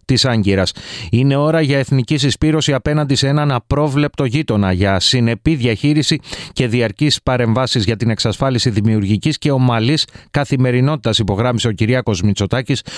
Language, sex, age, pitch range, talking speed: Greek, male, 30-49, 105-130 Hz, 130 wpm